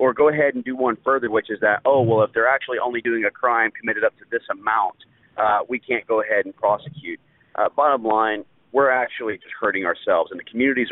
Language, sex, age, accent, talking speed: English, male, 40-59, American, 230 wpm